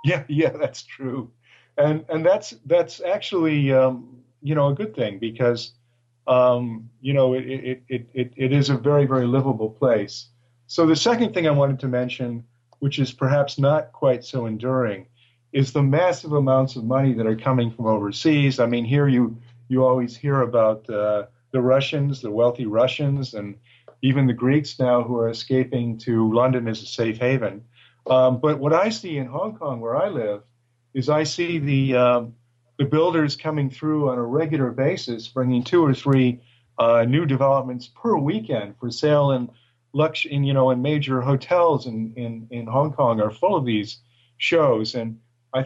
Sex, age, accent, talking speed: male, 40-59, American, 180 wpm